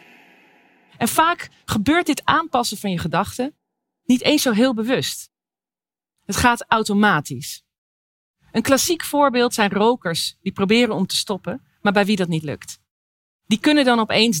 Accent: Dutch